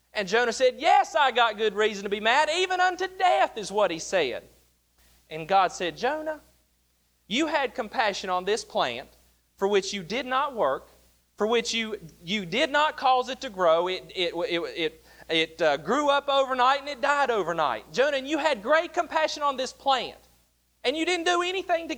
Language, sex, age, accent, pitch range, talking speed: English, male, 30-49, American, 180-275 Hz, 195 wpm